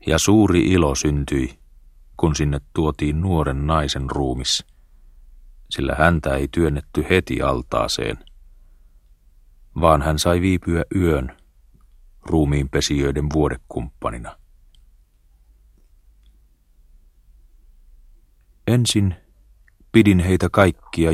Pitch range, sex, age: 70-95 Hz, male, 40-59